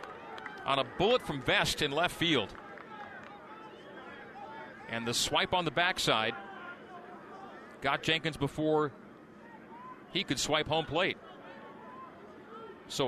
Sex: male